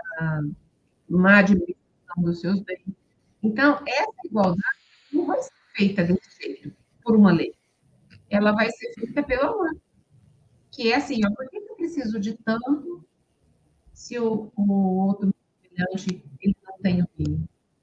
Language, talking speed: Portuguese, 140 wpm